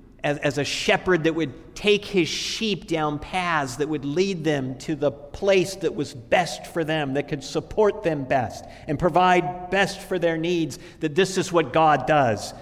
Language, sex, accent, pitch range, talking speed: English, male, American, 120-180 Hz, 185 wpm